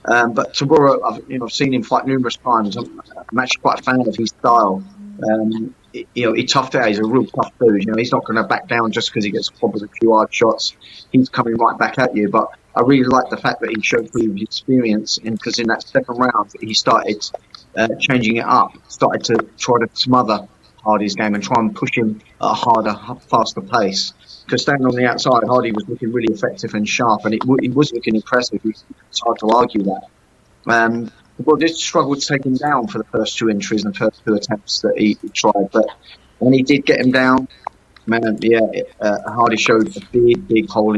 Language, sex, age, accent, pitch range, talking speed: English, male, 30-49, British, 110-130 Hz, 230 wpm